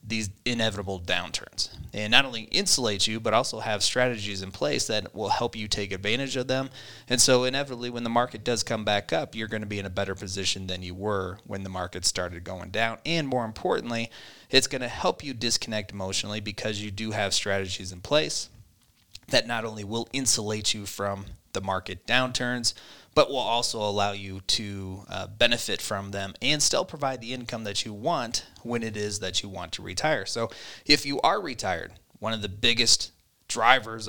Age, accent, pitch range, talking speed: 30-49, American, 100-115 Hz, 195 wpm